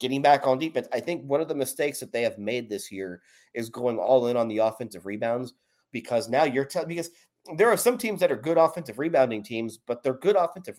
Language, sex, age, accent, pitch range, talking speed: English, male, 30-49, American, 120-150 Hz, 240 wpm